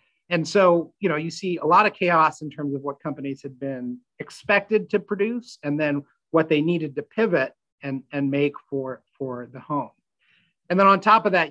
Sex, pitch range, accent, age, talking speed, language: male, 140-170 Hz, American, 40-59, 210 wpm, English